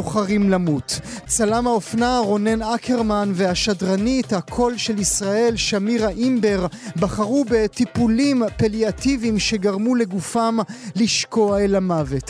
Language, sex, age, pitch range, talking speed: Hebrew, male, 30-49, 205-240 Hz, 95 wpm